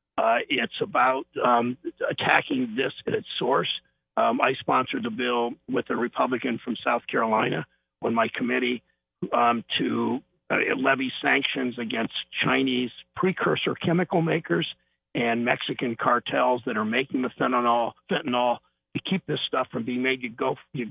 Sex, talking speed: male, 150 wpm